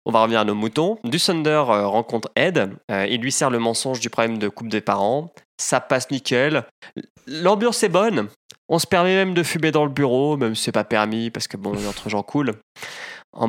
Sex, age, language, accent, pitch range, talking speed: male, 20-39, French, French, 110-150 Hz, 215 wpm